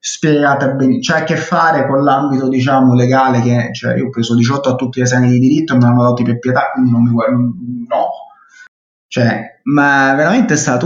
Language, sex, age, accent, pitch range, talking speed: Italian, male, 20-39, native, 120-145 Hz, 215 wpm